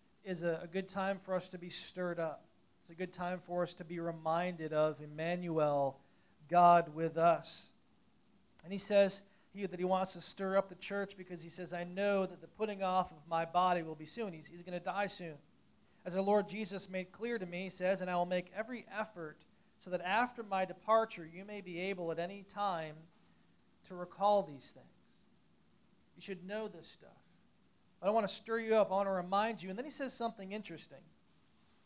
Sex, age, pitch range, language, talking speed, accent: male, 40-59, 165-200 Hz, English, 205 wpm, American